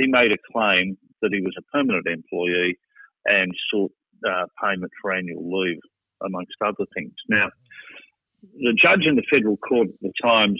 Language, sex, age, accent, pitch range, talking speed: English, male, 50-69, Australian, 95-115 Hz, 170 wpm